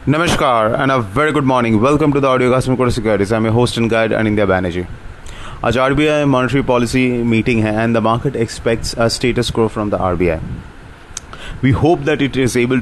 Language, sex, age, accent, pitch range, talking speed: English, male, 30-49, Indian, 105-125 Hz, 180 wpm